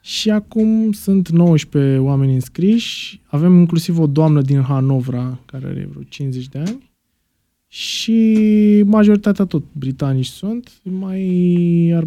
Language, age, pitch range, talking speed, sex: Romanian, 20-39, 135-175 Hz, 125 wpm, male